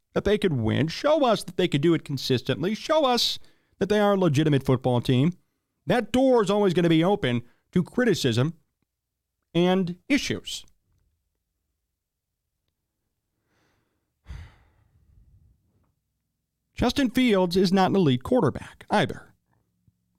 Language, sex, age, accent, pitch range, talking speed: English, male, 40-59, American, 120-185 Hz, 120 wpm